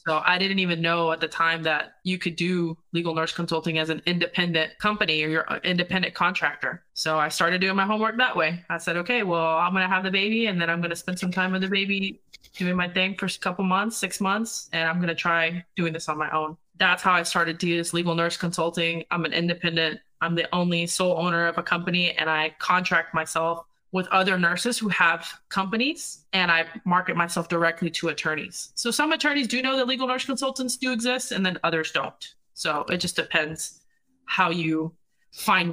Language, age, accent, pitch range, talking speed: English, 20-39, American, 165-190 Hz, 220 wpm